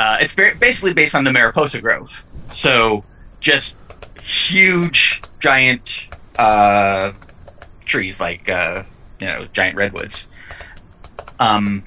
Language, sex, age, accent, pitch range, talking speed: English, male, 30-49, American, 100-135 Hz, 105 wpm